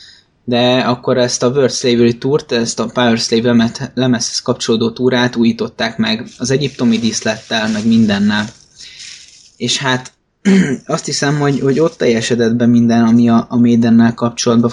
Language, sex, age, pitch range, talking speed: Hungarian, male, 20-39, 115-135 Hz, 145 wpm